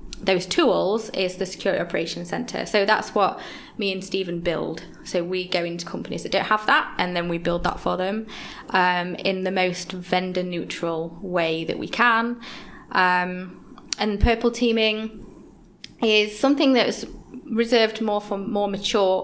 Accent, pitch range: British, 180-205 Hz